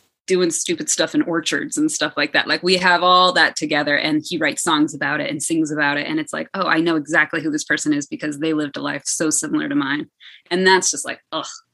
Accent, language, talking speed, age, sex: American, English, 255 wpm, 20-39, female